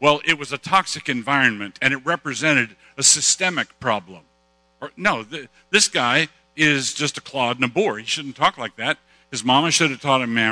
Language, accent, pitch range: English, American, 120-165 Hz